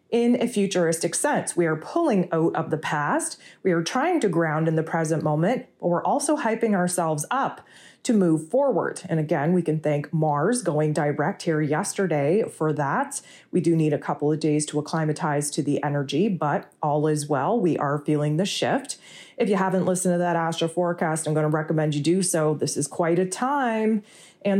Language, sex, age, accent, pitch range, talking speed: English, female, 30-49, American, 160-195 Hz, 205 wpm